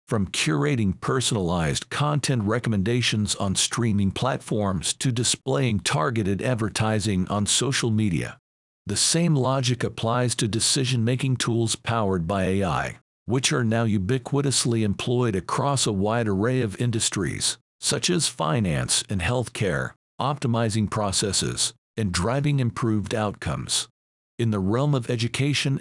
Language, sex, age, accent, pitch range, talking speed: English, male, 50-69, American, 105-130 Hz, 120 wpm